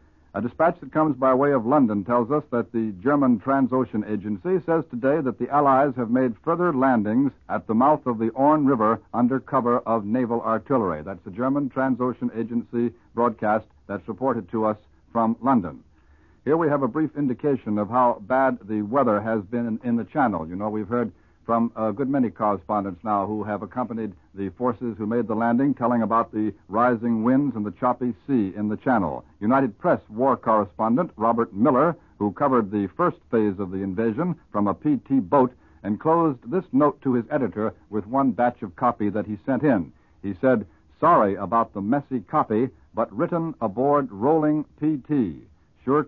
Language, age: English, 60-79